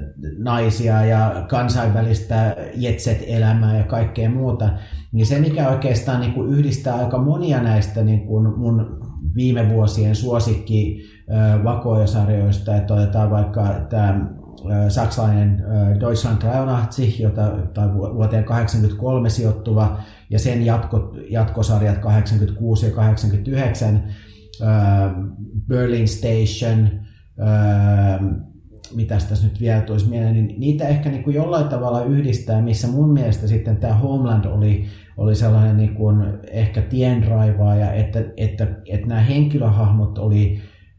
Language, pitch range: Finnish, 105-115 Hz